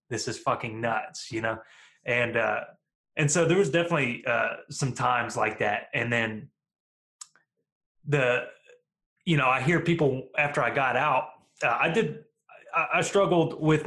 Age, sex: 20-39, male